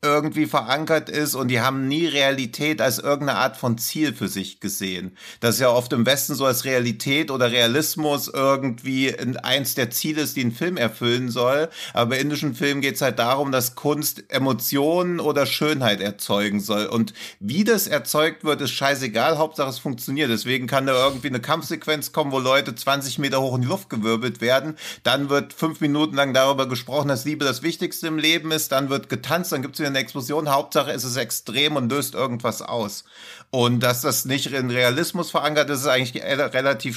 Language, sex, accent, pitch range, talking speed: German, male, German, 125-150 Hz, 195 wpm